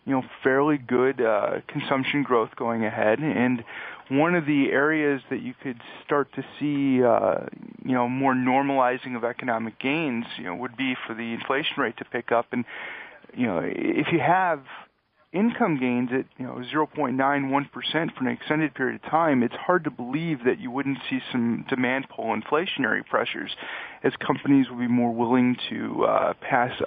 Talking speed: 175 wpm